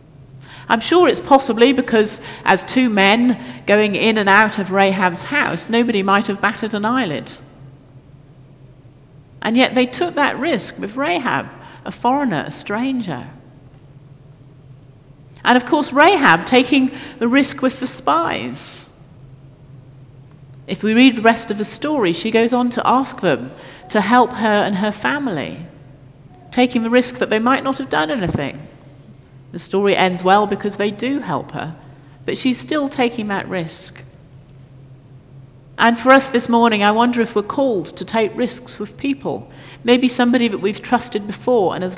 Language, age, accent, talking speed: English, 50-69, British, 160 wpm